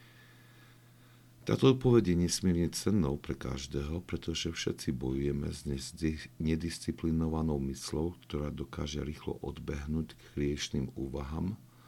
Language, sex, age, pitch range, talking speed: Slovak, male, 50-69, 70-110 Hz, 100 wpm